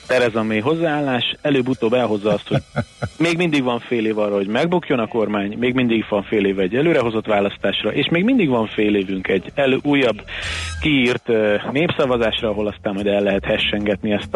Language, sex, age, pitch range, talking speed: Hungarian, male, 30-49, 100-120 Hz, 185 wpm